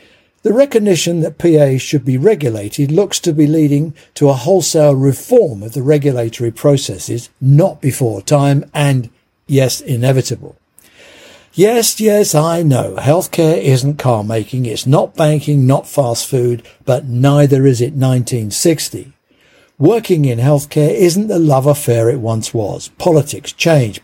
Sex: male